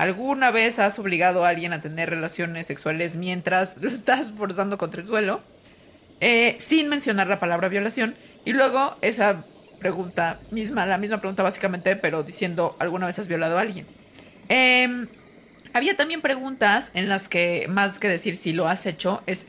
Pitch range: 185-245 Hz